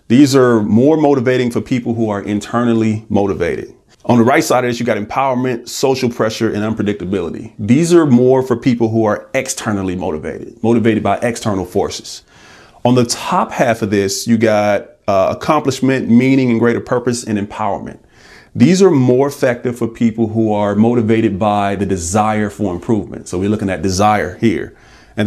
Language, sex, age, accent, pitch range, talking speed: English, male, 30-49, American, 100-125 Hz, 175 wpm